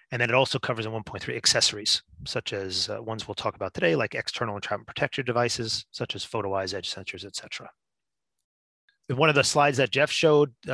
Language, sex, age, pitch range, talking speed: English, male, 30-49, 105-130 Hz, 195 wpm